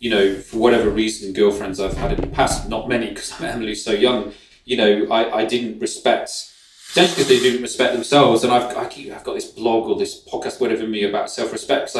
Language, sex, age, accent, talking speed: English, male, 30-49, British, 225 wpm